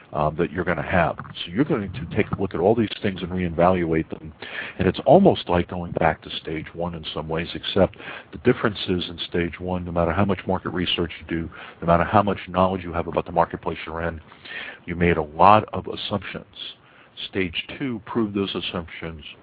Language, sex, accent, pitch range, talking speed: English, male, American, 85-100 Hz, 215 wpm